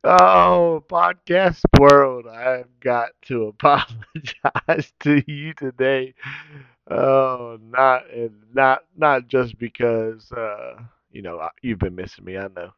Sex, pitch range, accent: male, 115-150 Hz, American